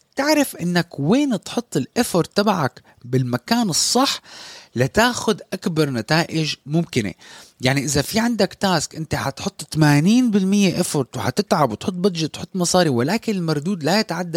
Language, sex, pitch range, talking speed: Arabic, male, 130-200 Hz, 125 wpm